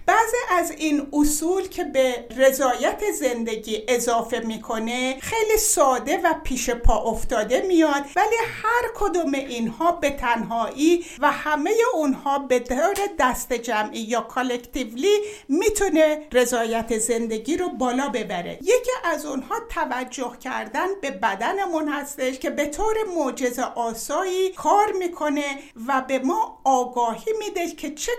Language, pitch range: Persian, 245-340 Hz